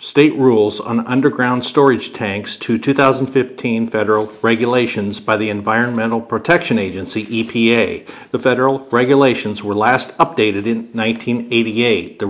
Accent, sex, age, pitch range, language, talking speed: American, male, 50-69, 110-135 Hz, English, 120 wpm